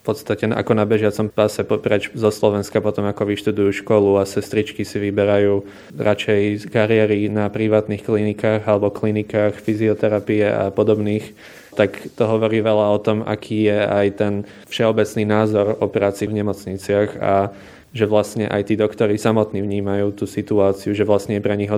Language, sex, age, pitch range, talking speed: Slovak, male, 20-39, 100-110 Hz, 165 wpm